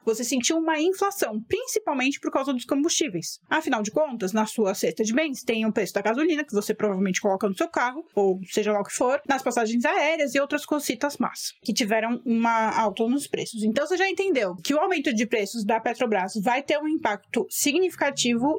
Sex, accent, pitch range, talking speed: female, Brazilian, 225-310 Hz, 205 wpm